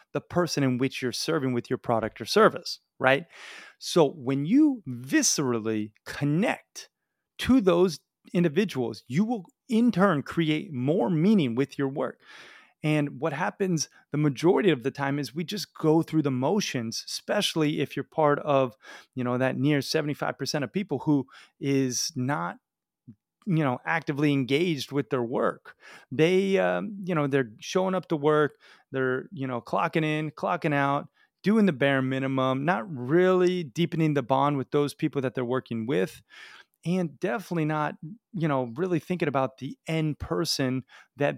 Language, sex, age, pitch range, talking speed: English, male, 30-49, 130-175 Hz, 160 wpm